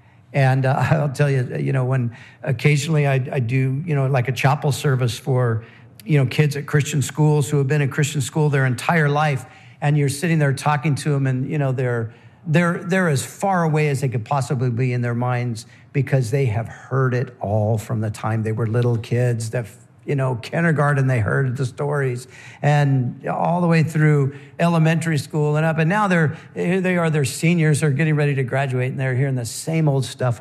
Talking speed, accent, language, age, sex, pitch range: 215 wpm, American, English, 50-69, male, 120-155 Hz